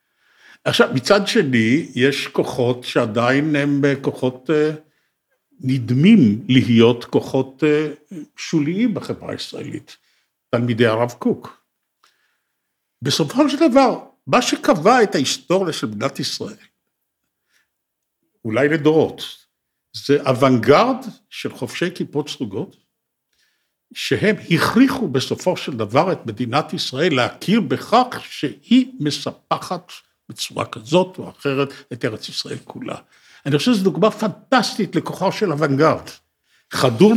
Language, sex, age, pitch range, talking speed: Hebrew, male, 60-79, 135-205 Hz, 105 wpm